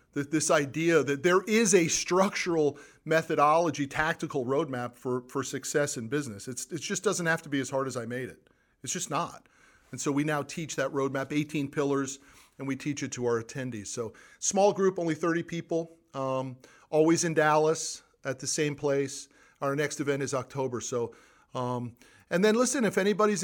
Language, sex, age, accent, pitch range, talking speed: English, male, 50-69, American, 130-160 Hz, 190 wpm